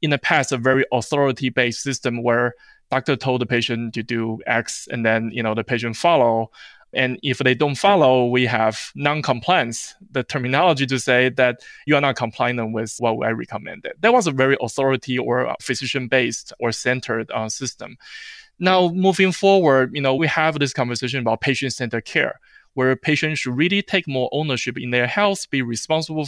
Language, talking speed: English, 180 wpm